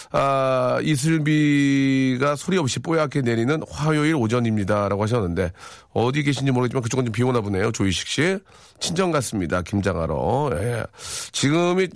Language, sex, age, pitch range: Korean, male, 40-59, 100-140 Hz